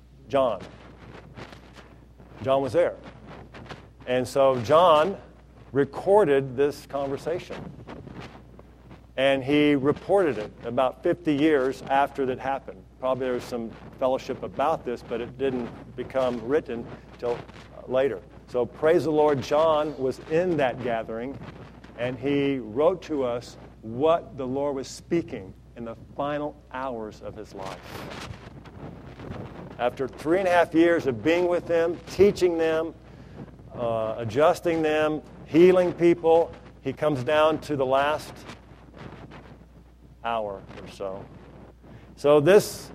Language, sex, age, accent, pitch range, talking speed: English, male, 50-69, American, 125-160 Hz, 125 wpm